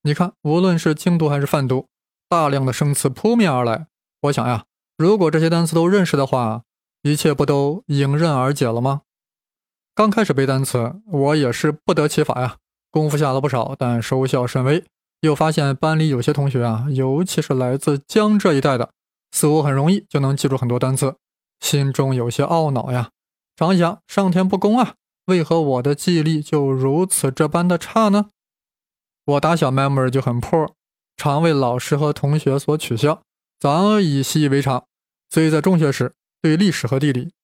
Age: 20-39